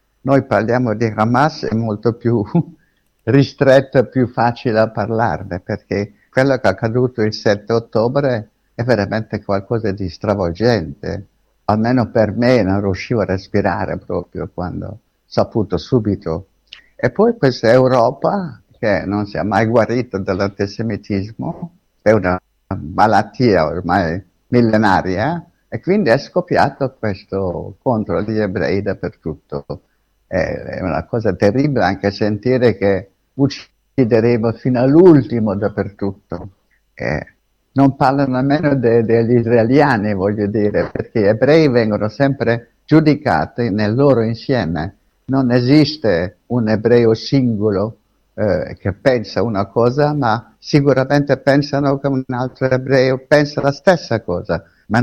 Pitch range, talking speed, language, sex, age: 100-130 Hz, 125 wpm, Italian, male, 60-79